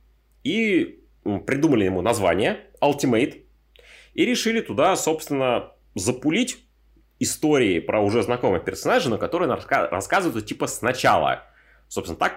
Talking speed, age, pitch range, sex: 110 wpm, 30-49, 105-155 Hz, male